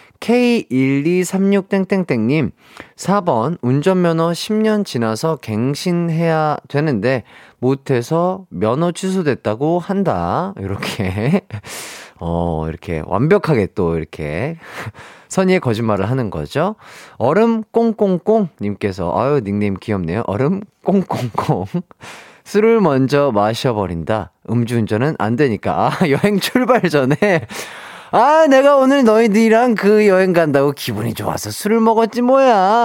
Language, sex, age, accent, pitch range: Korean, male, 30-49, native, 115-195 Hz